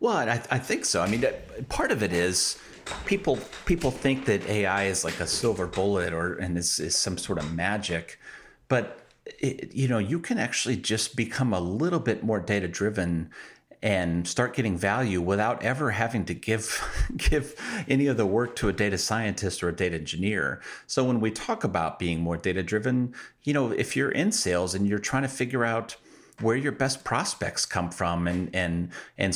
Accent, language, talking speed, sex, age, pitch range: American, English, 195 wpm, male, 40-59, 90-115 Hz